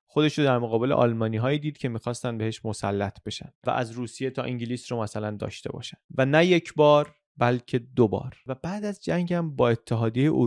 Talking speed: 195 wpm